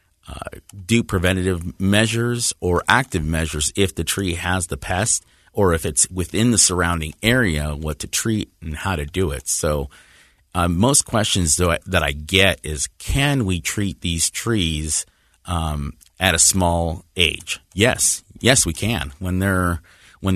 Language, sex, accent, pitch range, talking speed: English, male, American, 80-95 Hz, 155 wpm